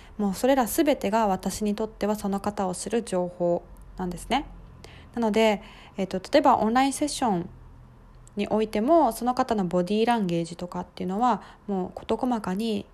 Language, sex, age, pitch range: Japanese, female, 20-39, 185-260 Hz